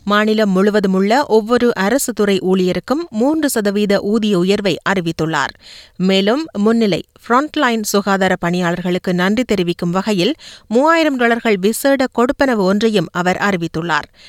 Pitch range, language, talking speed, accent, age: 160-220 Hz, Tamil, 105 wpm, native, 30-49